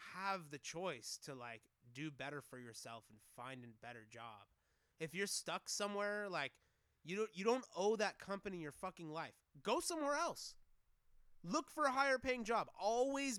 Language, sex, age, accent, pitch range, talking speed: English, male, 30-49, American, 145-200 Hz, 175 wpm